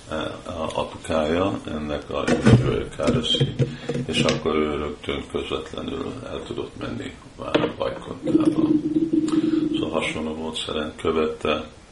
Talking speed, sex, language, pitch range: 95 wpm, male, Hungarian, 75-80 Hz